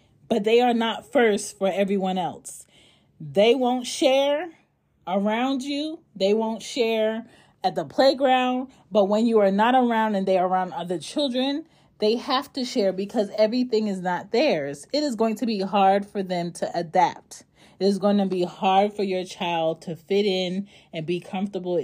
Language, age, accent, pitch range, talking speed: English, 30-49, American, 160-220 Hz, 180 wpm